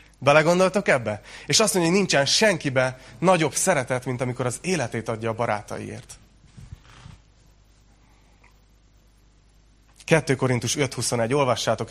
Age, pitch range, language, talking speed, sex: 30-49, 115-155 Hz, Hungarian, 105 wpm, male